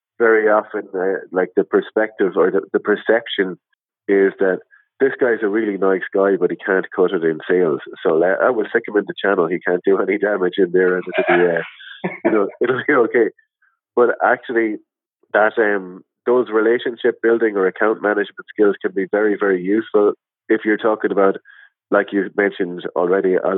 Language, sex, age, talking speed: English, male, 30-49, 190 wpm